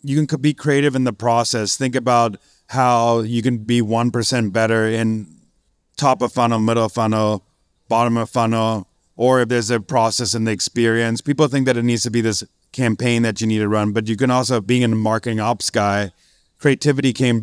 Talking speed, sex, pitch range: 205 wpm, male, 110-125 Hz